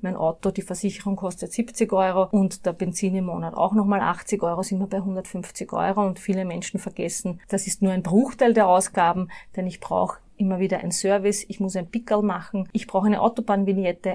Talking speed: 205 wpm